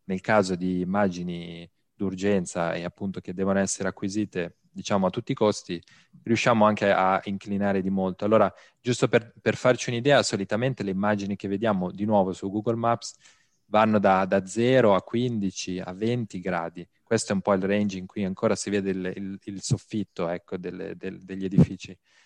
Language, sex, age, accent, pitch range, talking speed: Italian, male, 20-39, native, 95-115 Hz, 180 wpm